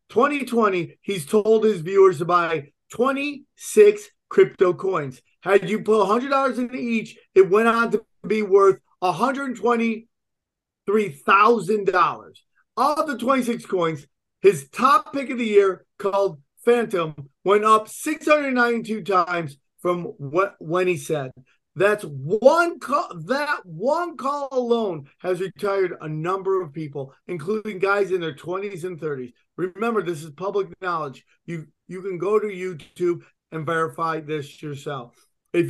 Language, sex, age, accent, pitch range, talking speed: English, male, 30-49, American, 170-230 Hz, 135 wpm